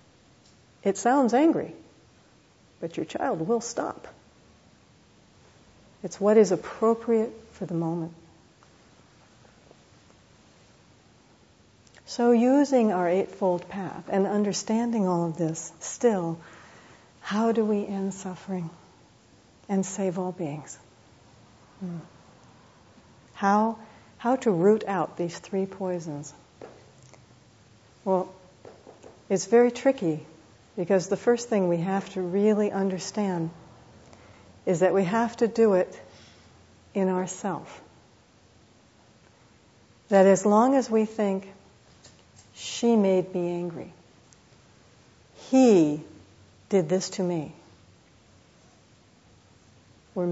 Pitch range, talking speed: 145-200 Hz, 100 wpm